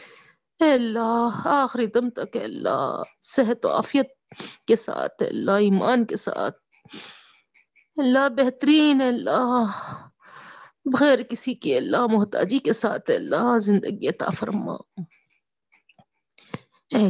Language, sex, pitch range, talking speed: Urdu, female, 220-265 Hz, 120 wpm